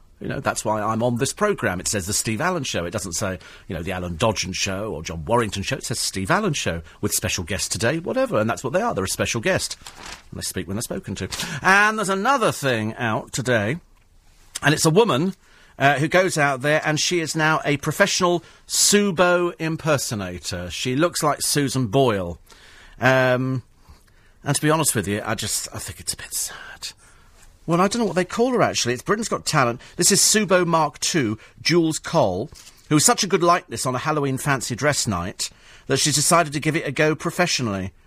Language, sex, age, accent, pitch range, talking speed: English, male, 40-59, British, 105-160 Hz, 215 wpm